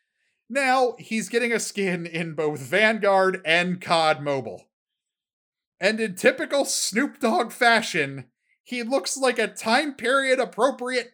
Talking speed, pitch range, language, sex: 120 wpm, 165-235 Hz, English, male